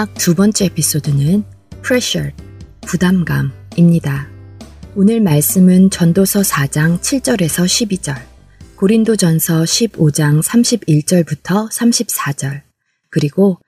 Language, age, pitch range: Korean, 20-39, 150-210 Hz